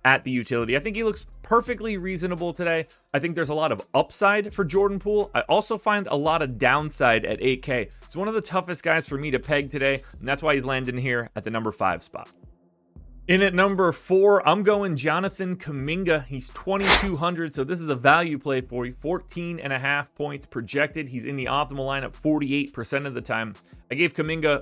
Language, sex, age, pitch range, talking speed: English, male, 30-49, 130-175 Hz, 210 wpm